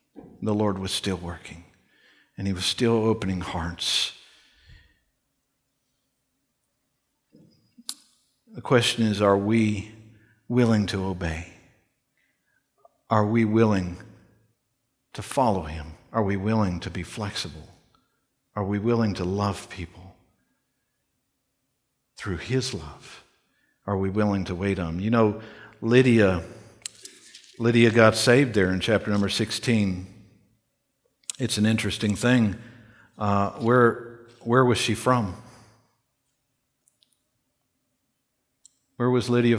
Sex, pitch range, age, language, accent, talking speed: male, 100-125 Hz, 60-79, English, American, 110 wpm